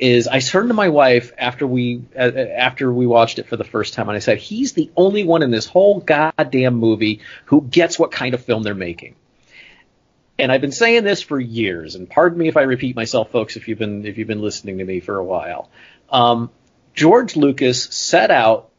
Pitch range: 120-155 Hz